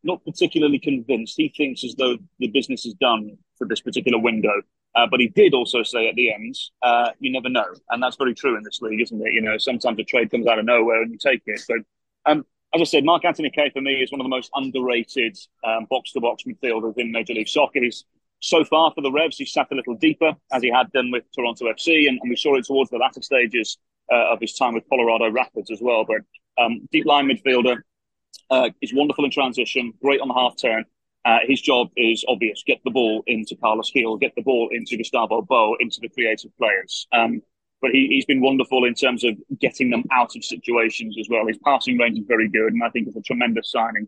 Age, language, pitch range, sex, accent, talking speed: 30-49, English, 120-150 Hz, male, British, 235 wpm